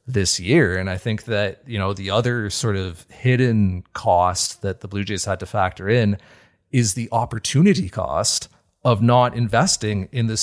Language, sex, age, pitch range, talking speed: English, male, 30-49, 95-115 Hz, 180 wpm